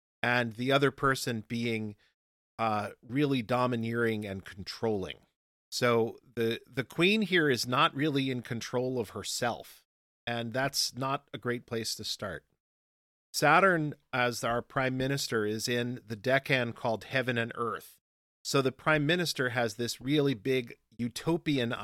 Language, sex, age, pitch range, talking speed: English, male, 40-59, 115-140 Hz, 145 wpm